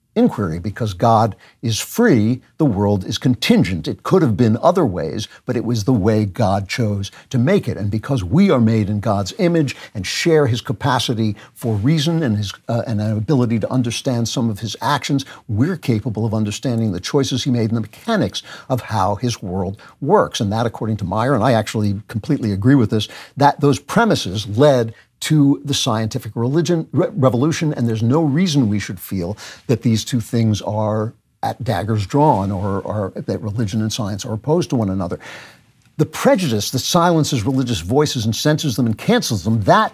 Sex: male